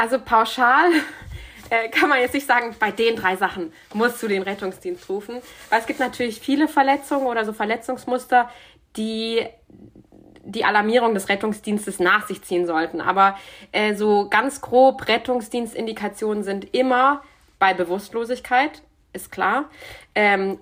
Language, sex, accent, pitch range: German, female, German, 195-250 Hz